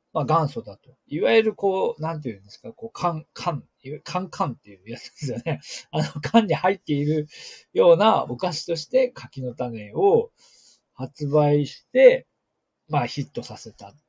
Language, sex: Japanese, male